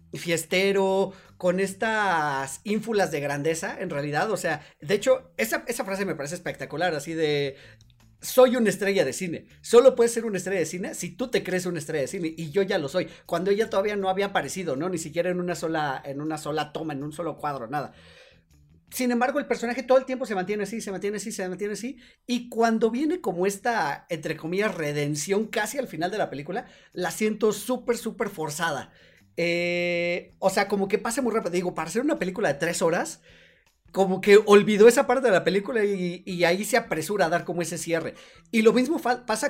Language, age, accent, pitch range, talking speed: Spanish, 40-59, Mexican, 160-220 Hz, 210 wpm